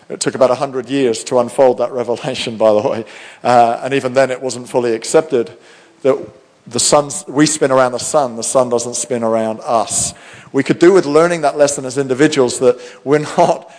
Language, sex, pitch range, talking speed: English, male, 130-150 Hz, 200 wpm